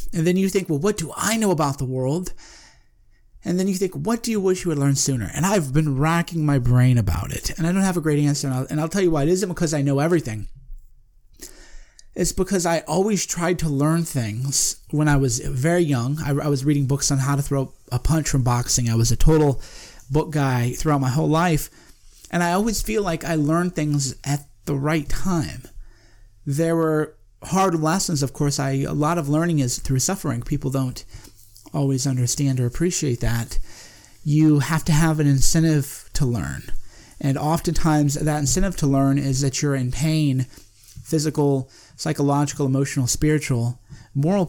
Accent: American